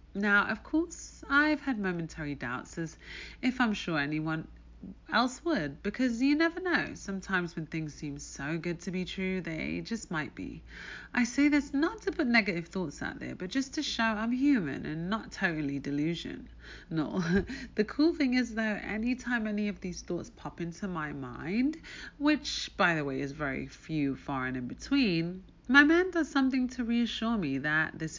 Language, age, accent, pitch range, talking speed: English, 30-49, British, 150-230 Hz, 180 wpm